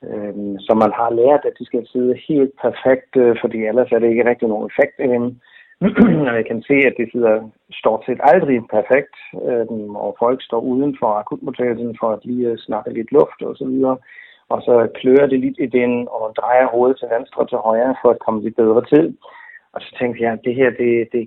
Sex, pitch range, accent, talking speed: male, 115-150 Hz, native, 225 wpm